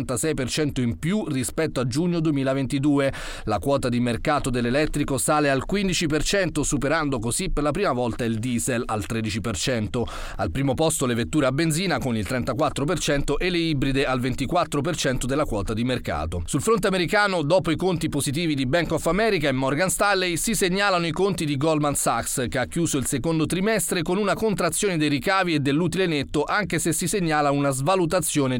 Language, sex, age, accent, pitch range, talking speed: Italian, male, 40-59, native, 135-170 Hz, 175 wpm